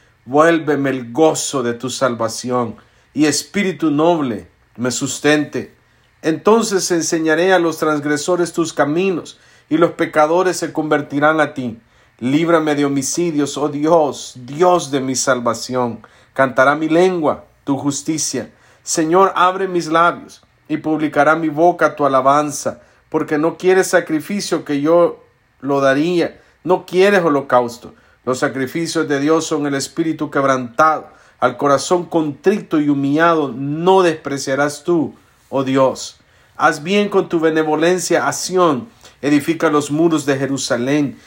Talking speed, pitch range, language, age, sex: 130 wpm, 130-165 Hz, English, 50-69, male